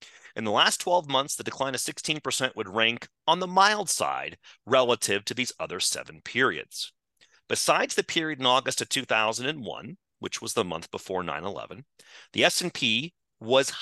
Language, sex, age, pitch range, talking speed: English, male, 30-49, 115-160 Hz, 160 wpm